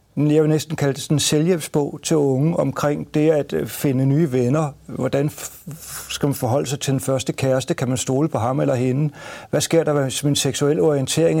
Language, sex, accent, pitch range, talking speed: Danish, male, native, 140-165 Hz, 205 wpm